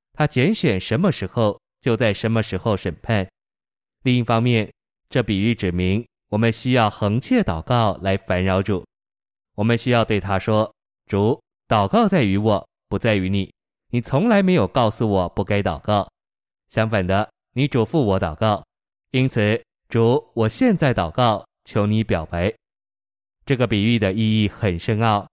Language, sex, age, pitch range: Chinese, male, 20-39, 100-120 Hz